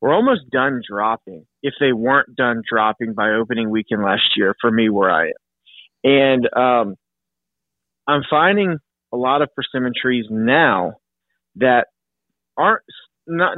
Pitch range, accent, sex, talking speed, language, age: 120-145 Hz, American, male, 140 wpm, English, 30-49